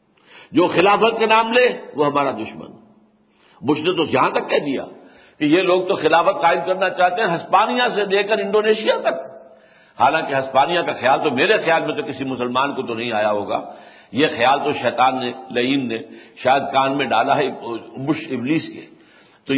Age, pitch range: 60-79, 135-205 Hz